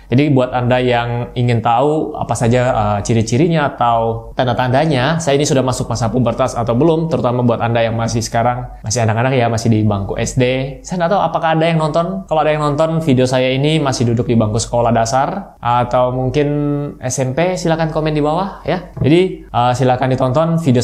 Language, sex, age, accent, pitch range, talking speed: Indonesian, male, 20-39, native, 120-155 Hz, 190 wpm